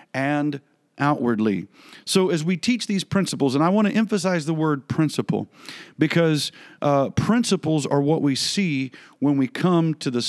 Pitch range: 130-170 Hz